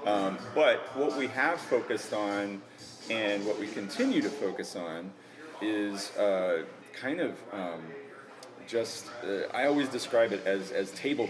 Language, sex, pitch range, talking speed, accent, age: English, male, 100-135 Hz, 150 wpm, American, 30-49